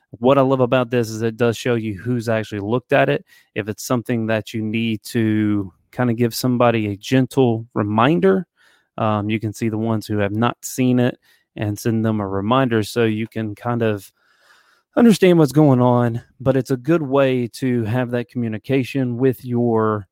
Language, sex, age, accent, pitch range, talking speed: English, male, 30-49, American, 110-125 Hz, 195 wpm